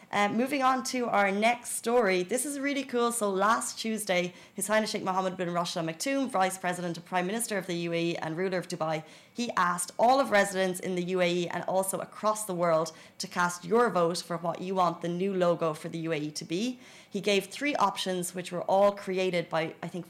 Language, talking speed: Arabic, 220 wpm